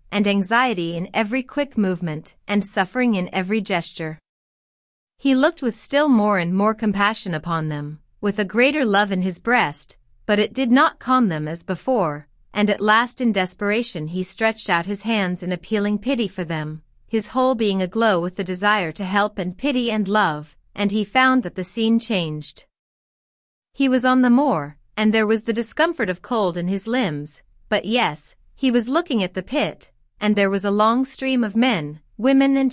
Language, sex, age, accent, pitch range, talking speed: English, female, 30-49, American, 185-245 Hz, 190 wpm